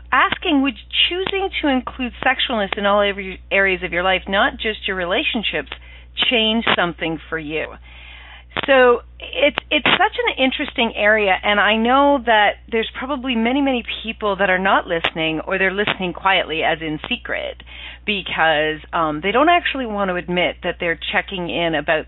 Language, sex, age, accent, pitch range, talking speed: English, female, 40-59, American, 160-225 Hz, 165 wpm